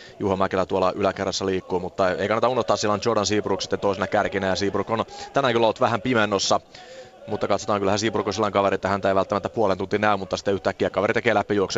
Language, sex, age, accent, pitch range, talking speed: Finnish, male, 30-49, native, 95-105 Hz, 210 wpm